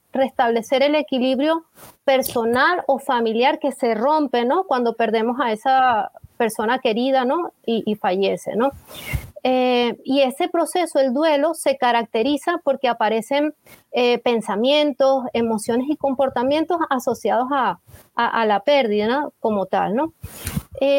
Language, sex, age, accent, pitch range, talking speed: Spanish, female, 30-49, American, 235-290 Hz, 130 wpm